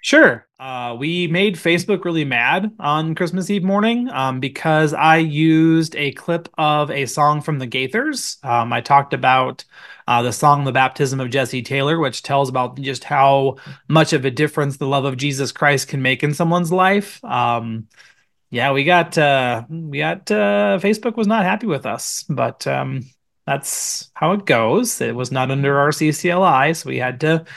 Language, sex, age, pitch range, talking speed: English, male, 30-49, 130-165 Hz, 185 wpm